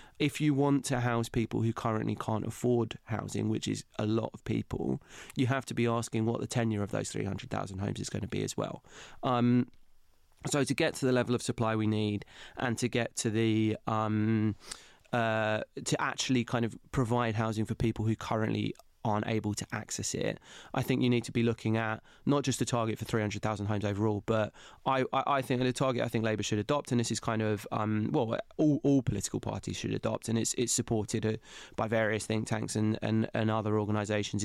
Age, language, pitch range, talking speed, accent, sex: 20-39, English, 110-125 Hz, 220 wpm, British, male